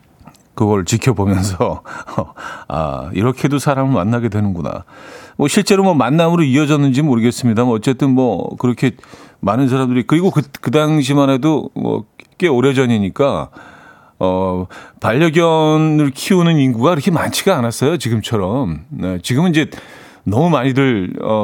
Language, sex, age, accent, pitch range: Korean, male, 40-59, native, 105-145 Hz